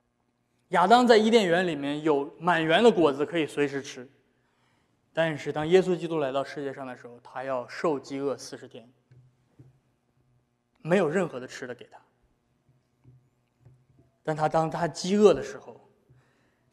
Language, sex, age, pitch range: Chinese, male, 20-39, 125-160 Hz